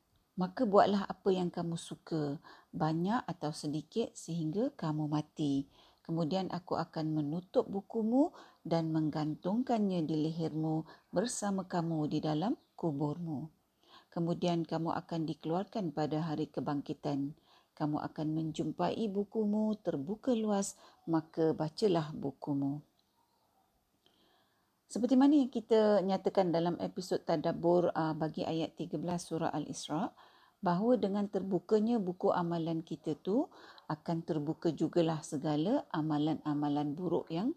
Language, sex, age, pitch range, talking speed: Malay, female, 50-69, 155-200 Hz, 115 wpm